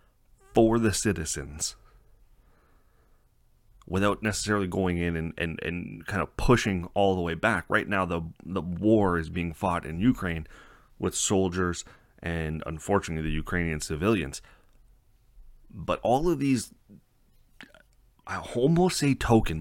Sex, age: male, 30-49